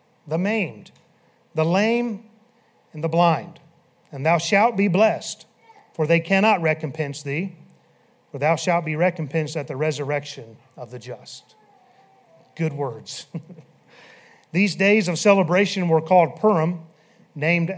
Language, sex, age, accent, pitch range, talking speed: English, male, 40-59, American, 160-200 Hz, 130 wpm